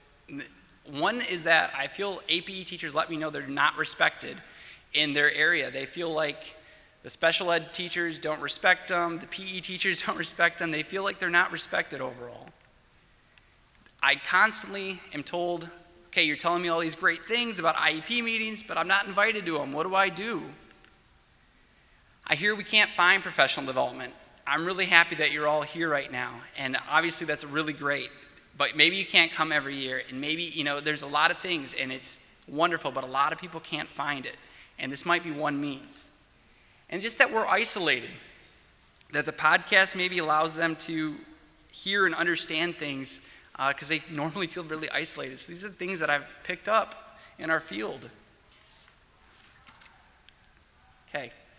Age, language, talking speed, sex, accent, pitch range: 20-39, English, 180 wpm, male, American, 150-185 Hz